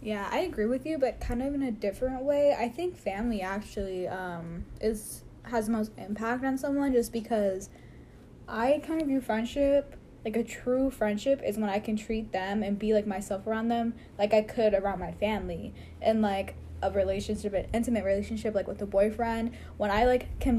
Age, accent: 10-29, American